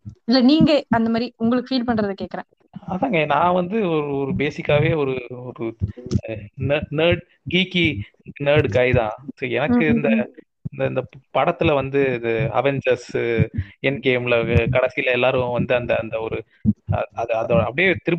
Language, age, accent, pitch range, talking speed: Tamil, 30-49, native, 125-165 Hz, 45 wpm